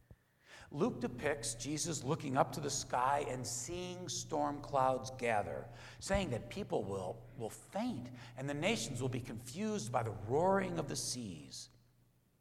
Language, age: English, 60-79